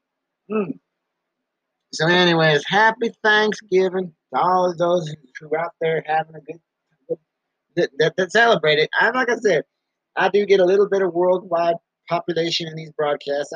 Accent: American